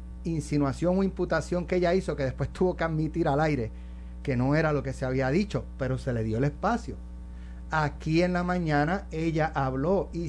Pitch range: 125-175 Hz